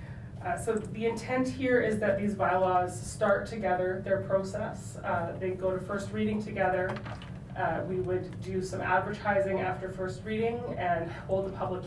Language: English